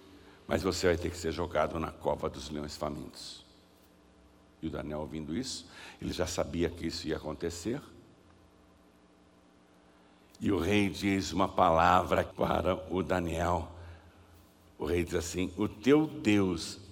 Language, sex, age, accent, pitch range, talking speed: Portuguese, male, 60-79, Brazilian, 80-125 Hz, 140 wpm